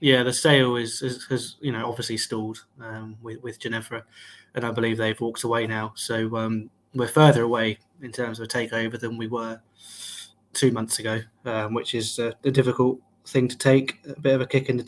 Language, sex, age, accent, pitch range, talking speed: English, male, 20-39, British, 120-135 Hz, 215 wpm